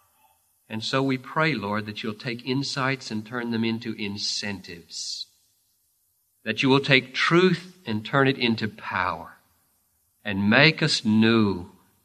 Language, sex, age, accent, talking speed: English, male, 50-69, American, 140 wpm